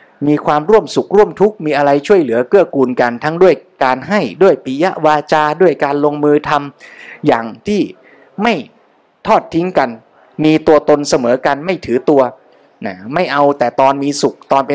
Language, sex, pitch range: Thai, male, 140-180 Hz